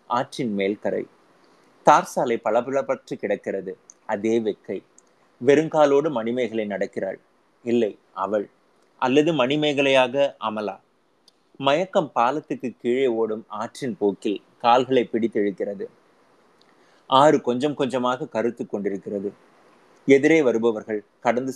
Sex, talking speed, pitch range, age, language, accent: male, 85 wpm, 110-140 Hz, 30-49, Tamil, native